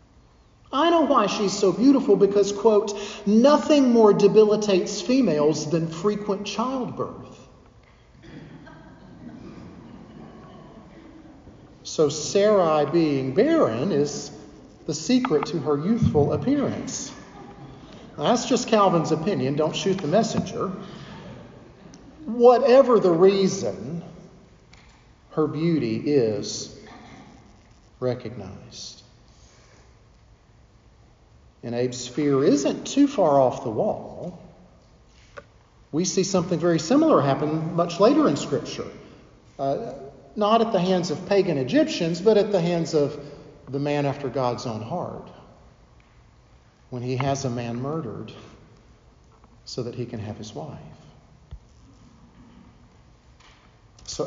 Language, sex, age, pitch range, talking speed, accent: English, male, 40-59, 135-205 Hz, 105 wpm, American